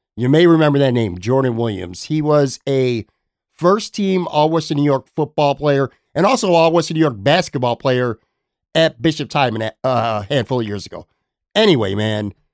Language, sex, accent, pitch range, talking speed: English, male, American, 125-155 Hz, 150 wpm